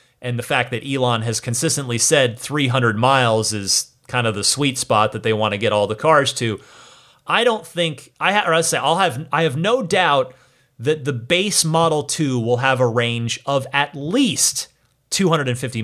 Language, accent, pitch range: English, American, 125-170 Hz